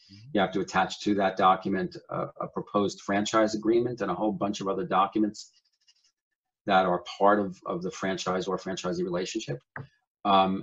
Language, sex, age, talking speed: English, male, 40-59, 170 wpm